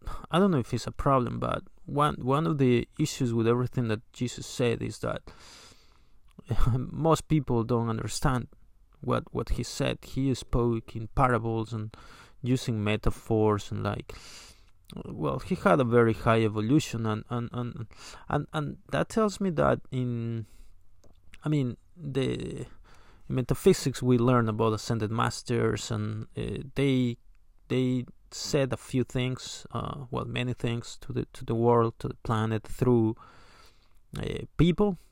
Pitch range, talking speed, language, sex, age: 110-135 Hz, 150 wpm, English, male, 20-39